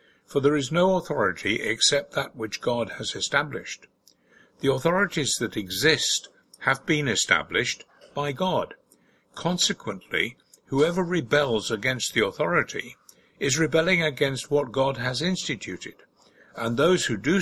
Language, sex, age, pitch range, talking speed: English, male, 60-79, 120-170 Hz, 125 wpm